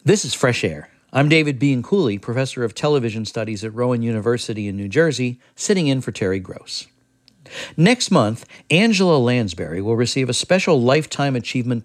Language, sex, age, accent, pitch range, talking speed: English, male, 50-69, American, 115-145 Hz, 160 wpm